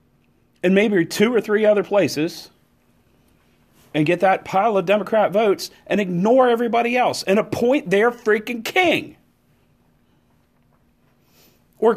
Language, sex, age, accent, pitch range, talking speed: English, male, 40-59, American, 145-220 Hz, 120 wpm